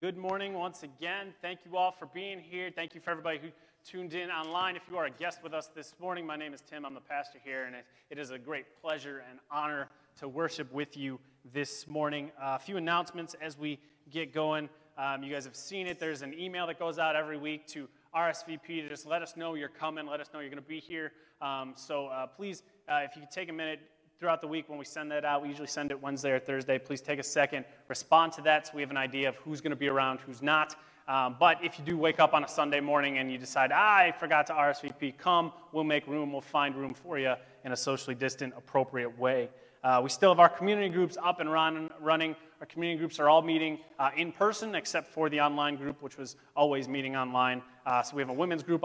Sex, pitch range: male, 140-160 Hz